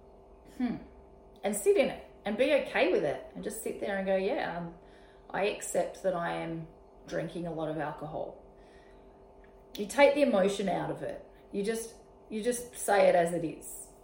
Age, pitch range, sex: 30-49, 195-260 Hz, female